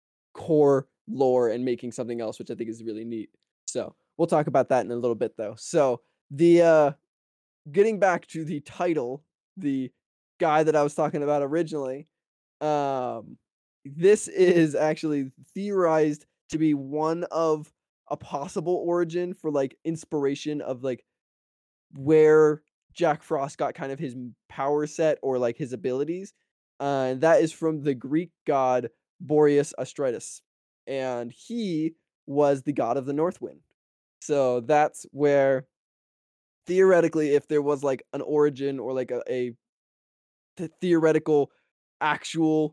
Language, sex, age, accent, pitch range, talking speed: English, male, 20-39, American, 130-160 Hz, 145 wpm